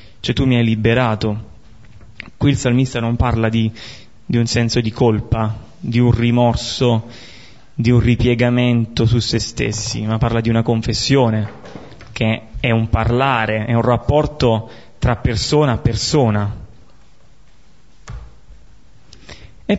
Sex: male